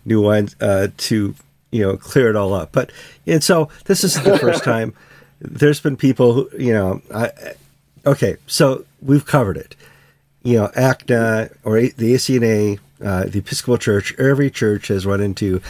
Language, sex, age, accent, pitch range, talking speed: English, male, 50-69, American, 100-140 Hz, 170 wpm